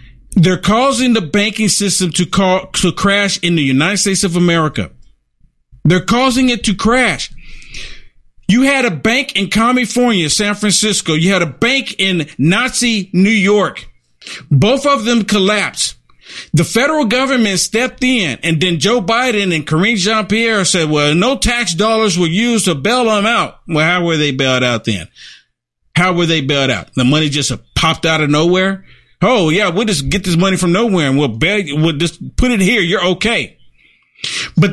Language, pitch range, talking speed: English, 160-235 Hz, 175 wpm